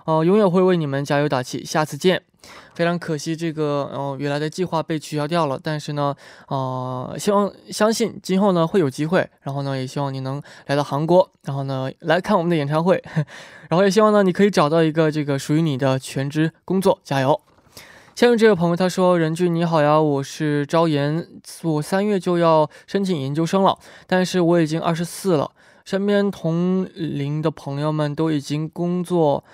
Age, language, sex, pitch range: 20-39, Korean, male, 145-180 Hz